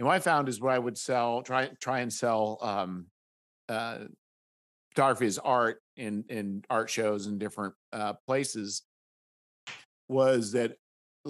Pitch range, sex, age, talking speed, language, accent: 105-130 Hz, male, 50-69, 150 wpm, English, American